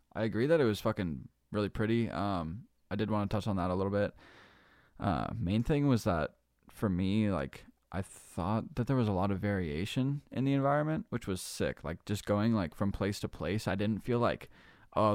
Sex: male